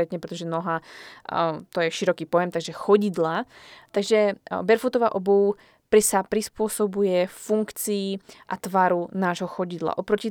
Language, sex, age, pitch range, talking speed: Slovak, female, 20-39, 180-210 Hz, 110 wpm